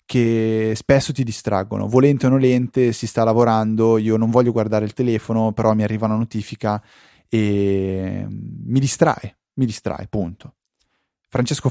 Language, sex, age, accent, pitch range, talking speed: Italian, male, 20-39, native, 105-130 Hz, 145 wpm